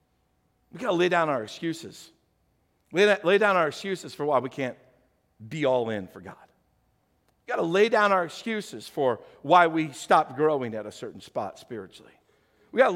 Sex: male